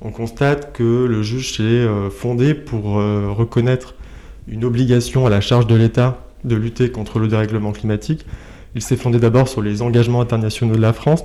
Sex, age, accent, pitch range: male, 20-39, French, 105-125 Hz